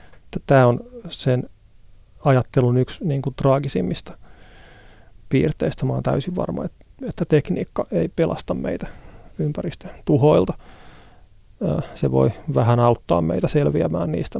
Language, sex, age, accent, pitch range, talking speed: Finnish, male, 30-49, native, 115-145 Hz, 115 wpm